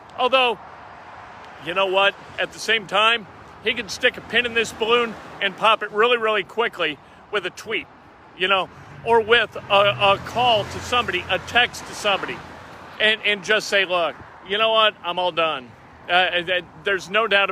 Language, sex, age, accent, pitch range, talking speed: English, male, 40-59, American, 200-255 Hz, 180 wpm